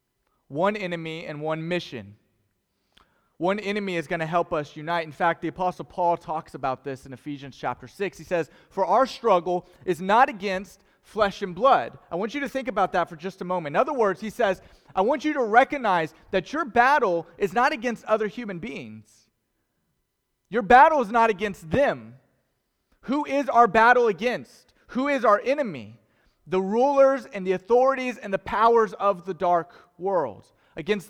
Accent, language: American, English